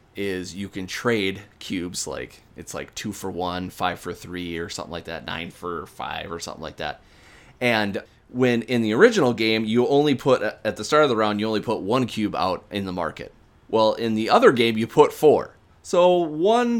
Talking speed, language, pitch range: 210 wpm, English, 95-125 Hz